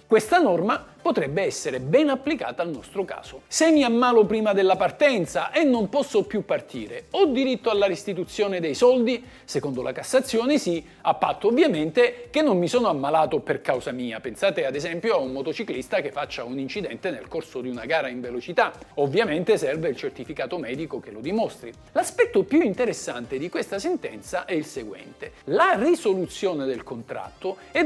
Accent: native